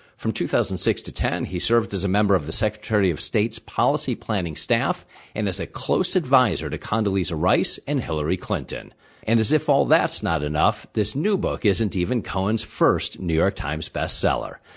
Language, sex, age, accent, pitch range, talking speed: English, male, 50-69, American, 95-125 Hz, 185 wpm